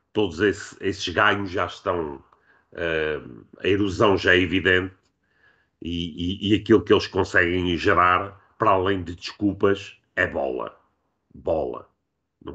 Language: Portuguese